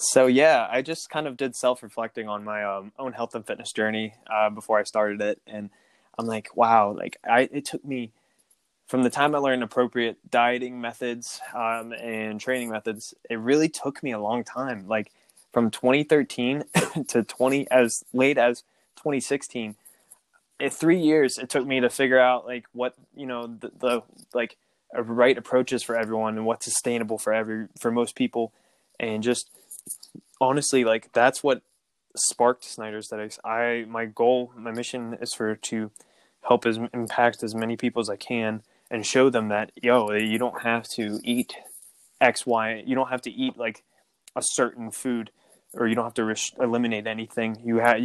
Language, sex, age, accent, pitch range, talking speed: English, male, 20-39, American, 110-125 Hz, 180 wpm